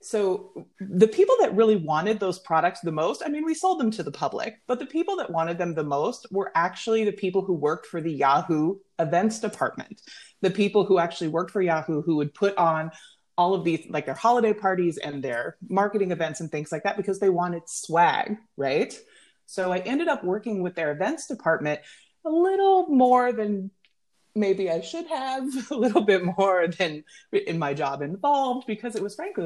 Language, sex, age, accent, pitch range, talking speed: English, female, 30-49, American, 165-230 Hz, 200 wpm